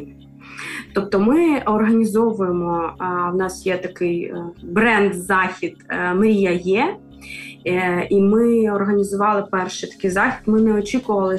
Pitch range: 185-220 Hz